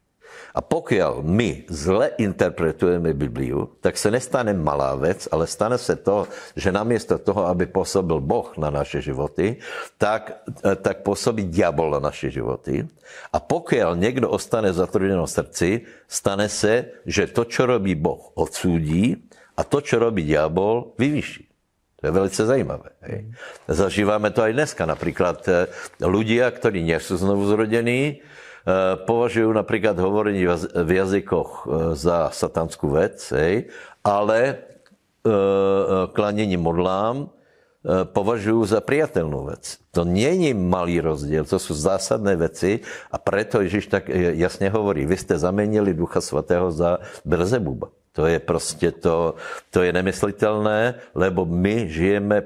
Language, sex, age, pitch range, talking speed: Slovak, male, 60-79, 90-110 Hz, 130 wpm